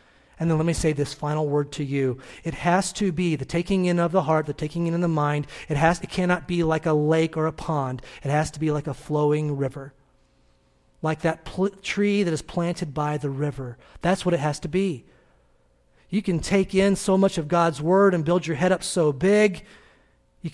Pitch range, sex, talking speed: 140-180 Hz, male, 220 wpm